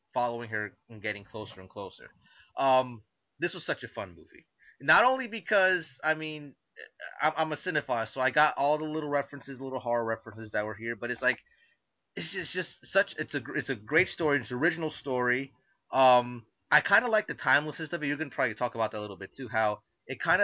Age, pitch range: 30-49, 115-145 Hz